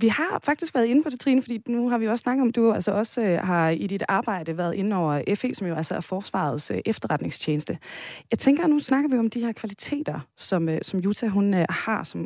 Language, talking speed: Danish, 235 wpm